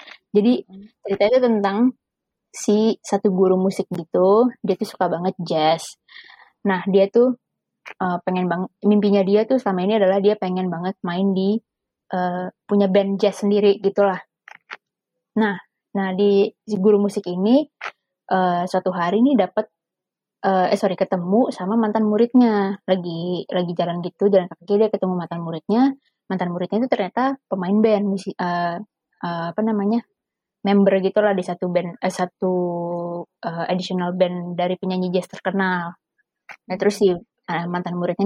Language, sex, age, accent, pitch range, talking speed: Indonesian, female, 20-39, native, 185-220 Hz, 150 wpm